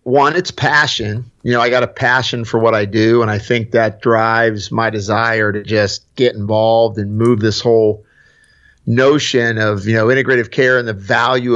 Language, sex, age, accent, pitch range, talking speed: English, male, 50-69, American, 110-135 Hz, 190 wpm